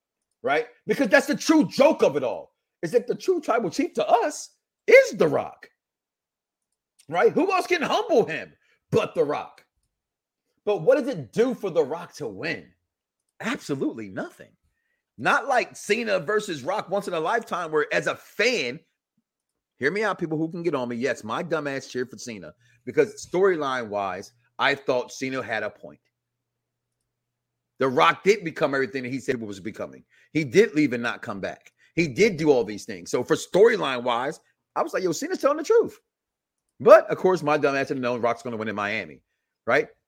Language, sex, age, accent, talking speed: English, male, 40-59, American, 190 wpm